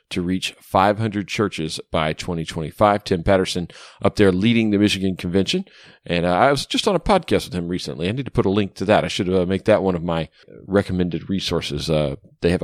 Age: 40-59